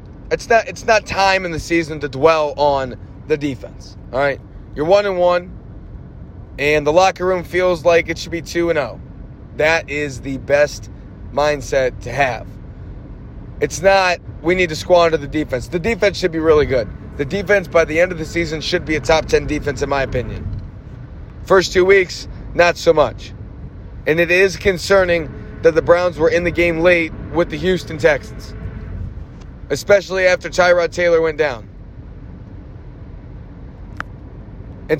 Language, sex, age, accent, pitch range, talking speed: English, male, 30-49, American, 120-180 Hz, 170 wpm